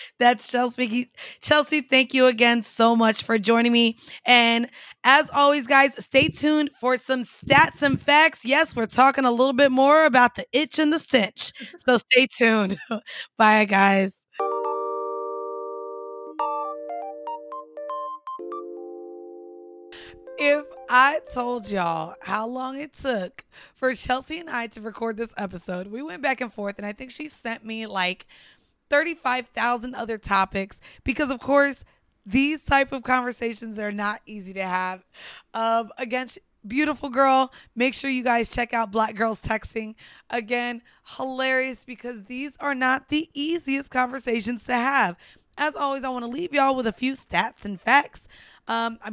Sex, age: female, 20-39